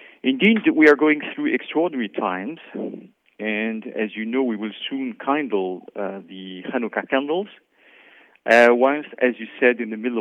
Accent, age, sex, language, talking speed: French, 50-69, male, French, 155 wpm